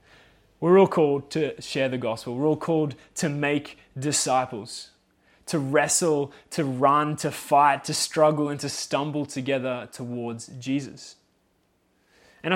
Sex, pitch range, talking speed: male, 135-170 Hz, 135 wpm